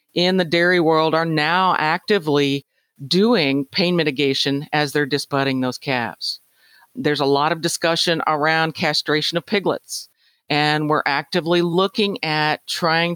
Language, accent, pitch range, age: English, American, 155-190 Hz, 50-69